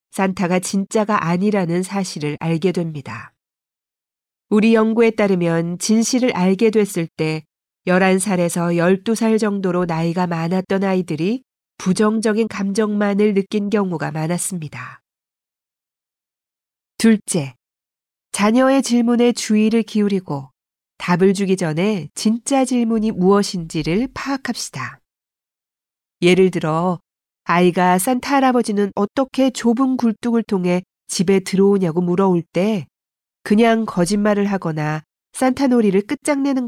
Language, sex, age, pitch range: Korean, female, 40-59, 175-225 Hz